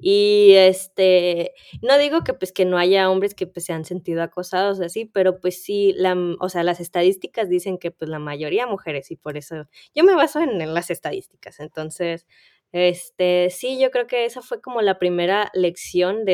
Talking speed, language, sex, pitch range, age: 200 wpm, Spanish, female, 175-220 Hz, 20-39